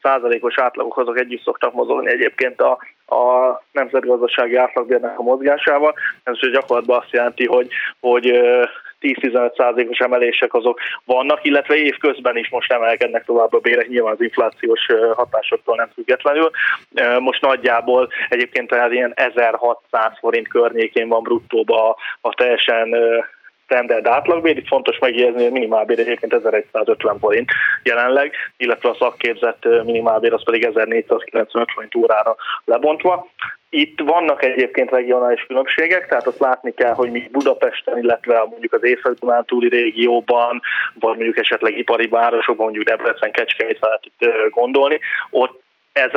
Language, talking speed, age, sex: Hungarian, 130 wpm, 20-39, male